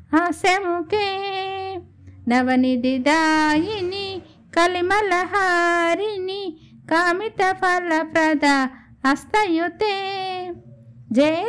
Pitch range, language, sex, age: 275-375 Hz, Telugu, female, 50-69